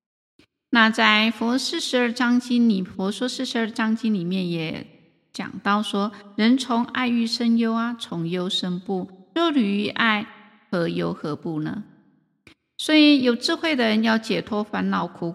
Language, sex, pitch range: Chinese, female, 190-245 Hz